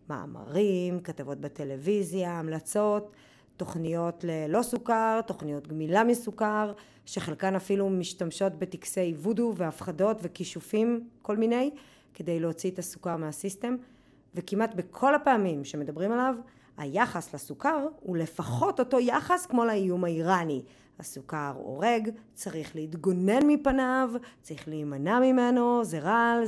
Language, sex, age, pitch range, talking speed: Hebrew, female, 20-39, 145-215 Hz, 110 wpm